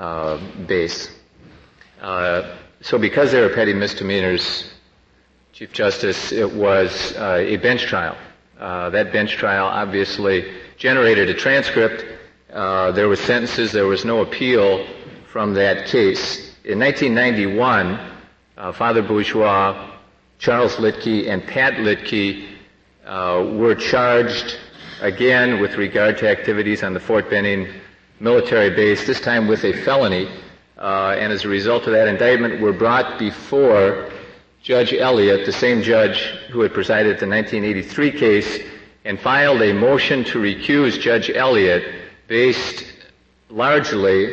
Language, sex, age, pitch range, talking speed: English, male, 50-69, 95-115 Hz, 130 wpm